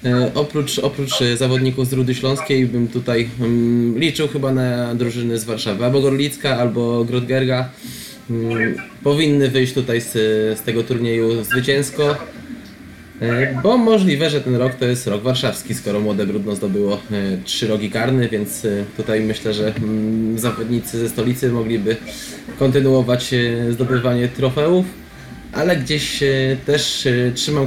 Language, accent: Polish, native